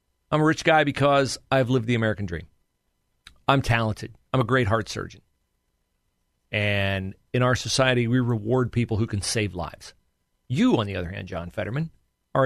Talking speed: 175 wpm